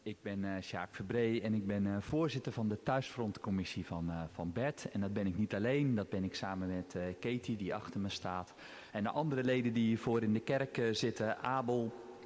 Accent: Dutch